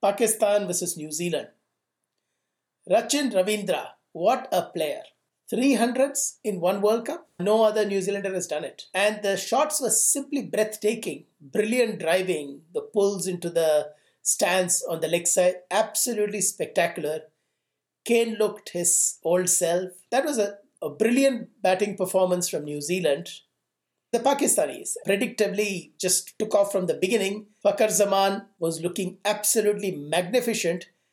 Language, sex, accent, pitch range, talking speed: English, male, Indian, 175-220 Hz, 135 wpm